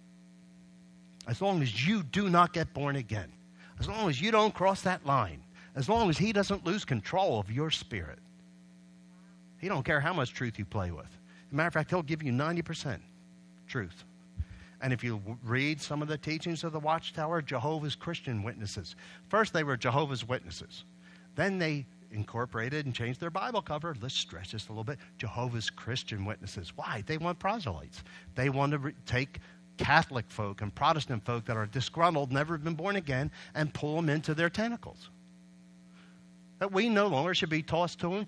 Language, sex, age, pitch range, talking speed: English, male, 50-69, 105-175 Hz, 185 wpm